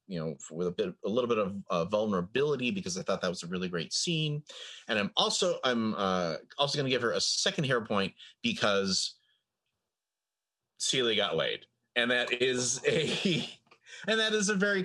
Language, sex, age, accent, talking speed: English, male, 30-49, American, 190 wpm